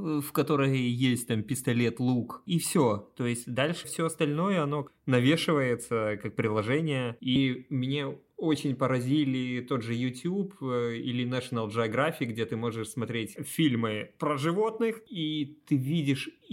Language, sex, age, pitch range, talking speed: Russian, male, 20-39, 125-155 Hz, 135 wpm